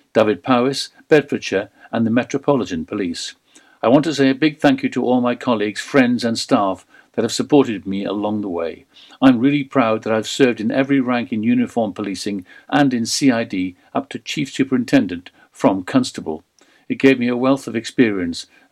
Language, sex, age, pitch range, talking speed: English, male, 50-69, 115-145 Hz, 185 wpm